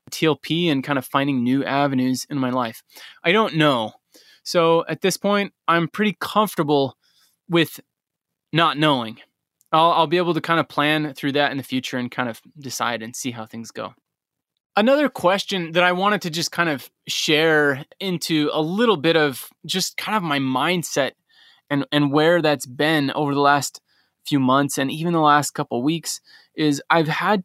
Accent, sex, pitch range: American, male, 135-165 Hz